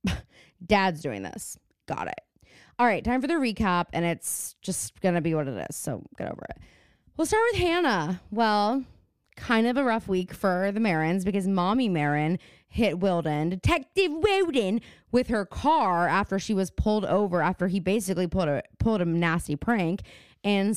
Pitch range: 175-230 Hz